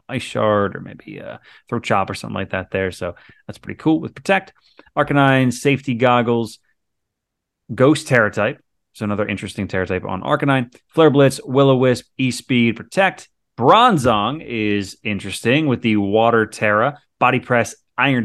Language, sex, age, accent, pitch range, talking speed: English, male, 30-49, American, 100-135 Hz, 150 wpm